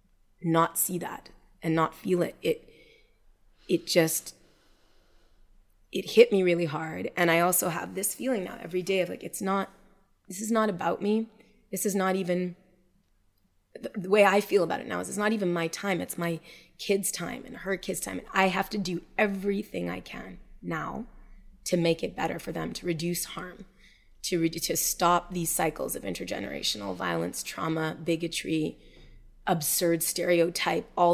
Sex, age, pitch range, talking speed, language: female, 20-39, 170-195 Hz, 170 wpm, English